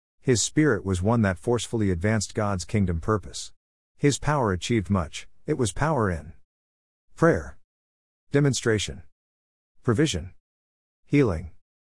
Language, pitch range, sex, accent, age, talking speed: English, 85-115 Hz, male, American, 50-69, 110 wpm